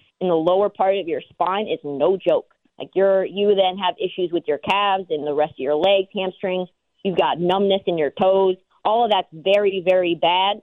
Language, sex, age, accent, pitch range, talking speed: English, female, 30-49, American, 180-215 Hz, 215 wpm